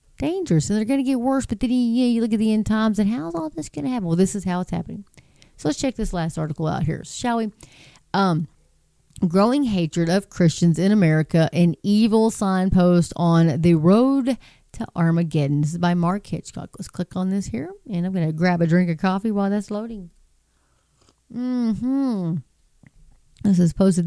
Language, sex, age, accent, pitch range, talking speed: English, female, 30-49, American, 170-210 Hz, 200 wpm